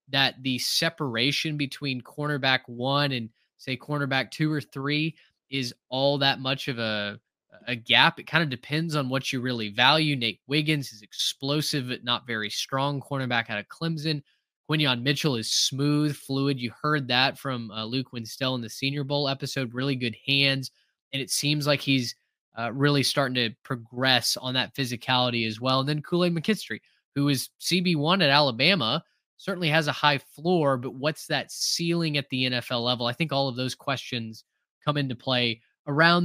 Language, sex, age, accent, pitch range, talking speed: English, male, 20-39, American, 130-155 Hz, 180 wpm